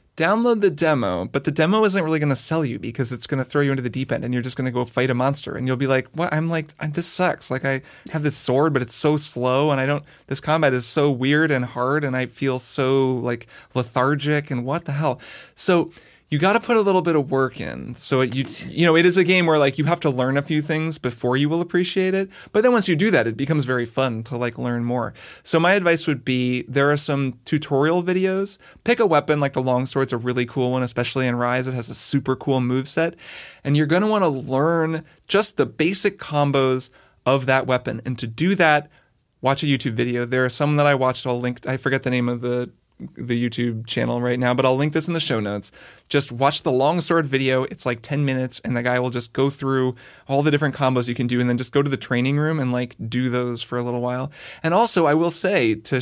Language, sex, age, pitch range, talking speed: English, male, 20-39, 125-155 Hz, 255 wpm